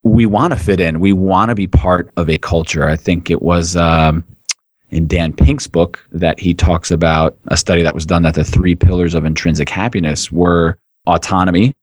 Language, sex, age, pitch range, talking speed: English, male, 30-49, 85-105 Hz, 205 wpm